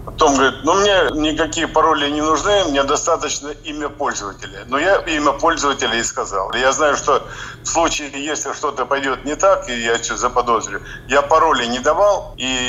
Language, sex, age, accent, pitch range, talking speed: Russian, male, 50-69, native, 120-155 Hz, 175 wpm